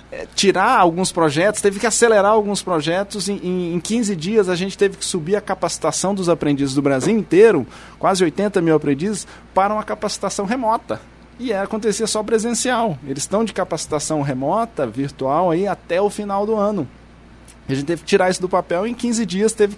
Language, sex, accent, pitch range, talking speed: Portuguese, male, Brazilian, 135-200 Hz, 185 wpm